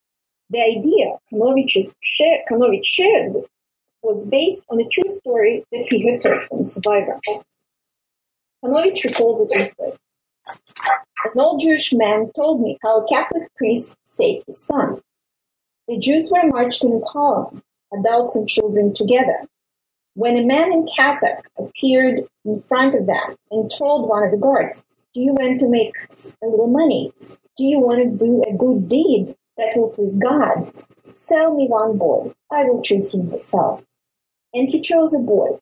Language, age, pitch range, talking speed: English, 30-49, 220-310 Hz, 160 wpm